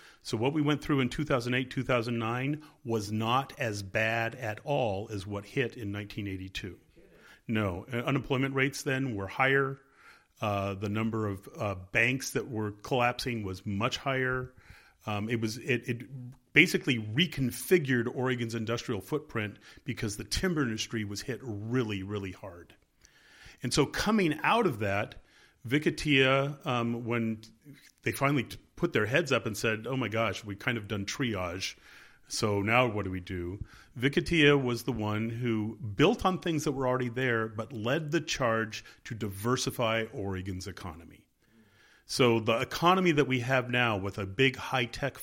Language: English